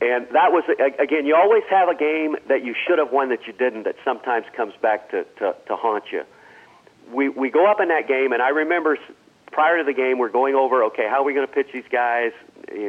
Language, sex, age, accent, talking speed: English, male, 50-69, American, 245 wpm